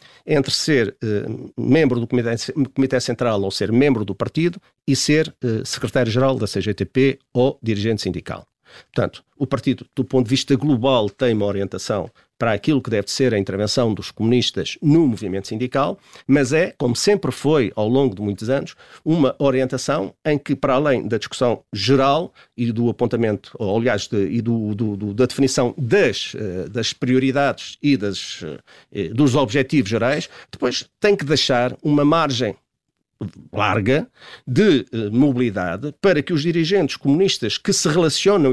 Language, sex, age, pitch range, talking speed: Portuguese, male, 50-69, 115-155 Hz, 155 wpm